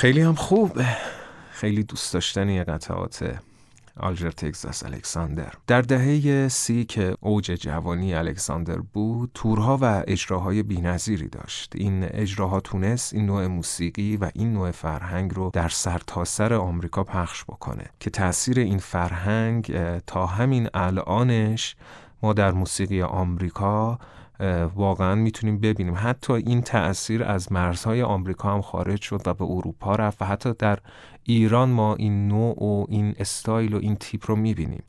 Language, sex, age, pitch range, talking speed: Persian, male, 30-49, 95-115 Hz, 145 wpm